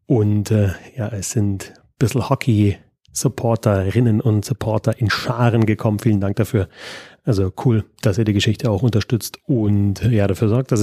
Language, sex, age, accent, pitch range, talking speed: German, male, 30-49, German, 105-125 Hz, 155 wpm